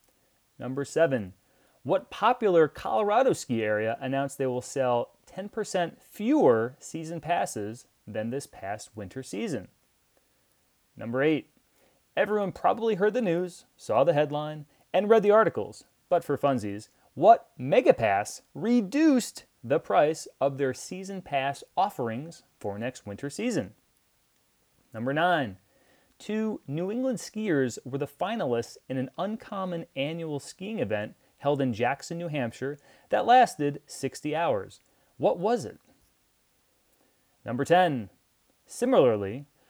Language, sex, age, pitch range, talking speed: English, male, 30-49, 130-190 Hz, 120 wpm